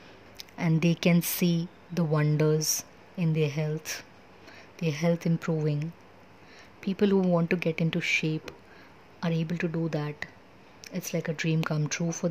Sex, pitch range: female, 155-170 Hz